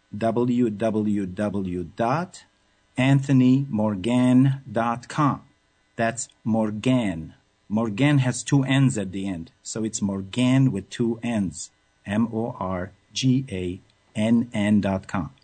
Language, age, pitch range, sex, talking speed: English, 50-69, 105-130 Hz, male, 65 wpm